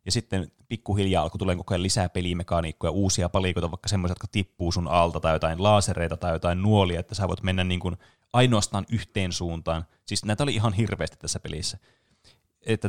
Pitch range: 90-110 Hz